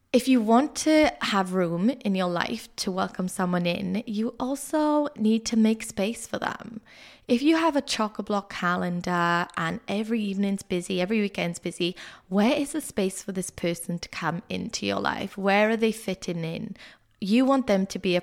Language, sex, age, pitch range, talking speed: English, female, 20-39, 180-225 Hz, 190 wpm